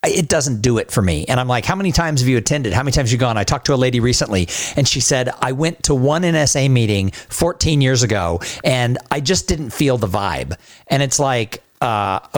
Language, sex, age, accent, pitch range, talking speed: English, male, 50-69, American, 115-145 Hz, 240 wpm